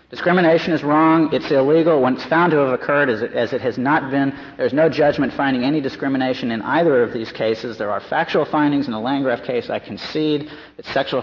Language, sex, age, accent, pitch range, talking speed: English, male, 40-59, American, 120-145 Hz, 215 wpm